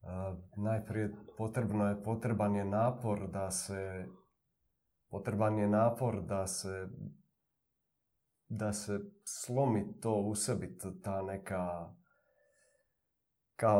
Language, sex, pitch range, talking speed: Croatian, male, 95-115 Hz, 100 wpm